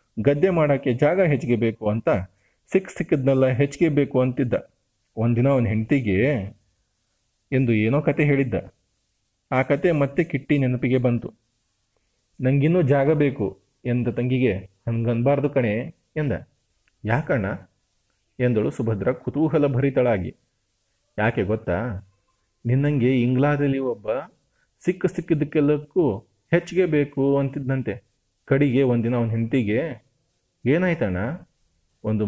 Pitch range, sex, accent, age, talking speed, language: 110-145 Hz, male, native, 30-49, 100 wpm, Kannada